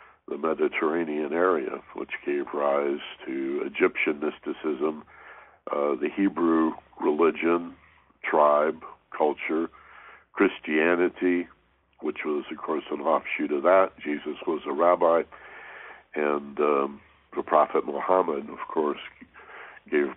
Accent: American